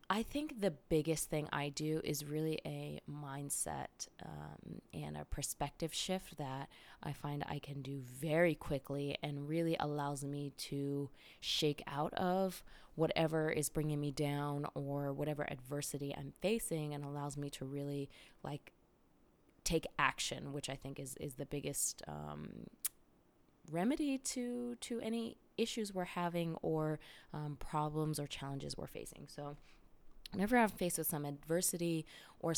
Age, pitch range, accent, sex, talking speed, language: 20-39, 145-170 Hz, American, female, 145 wpm, English